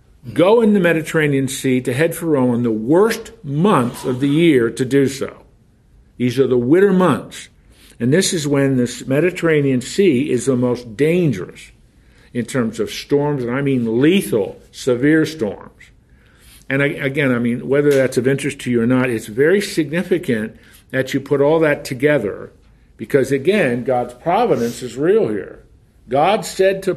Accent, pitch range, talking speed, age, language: American, 125-165 Hz, 170 wpm, 50-69, English